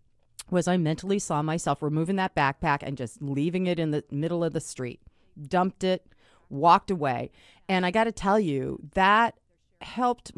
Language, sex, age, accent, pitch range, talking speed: English, female, 40-59, American, 140-180 Hz, 175 wpm